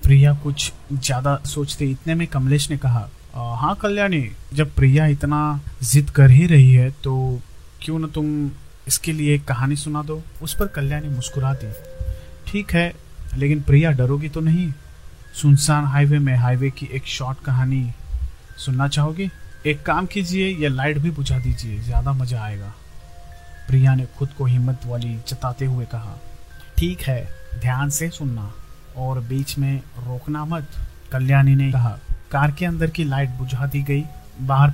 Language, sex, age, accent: Hindi, male, 30-49, native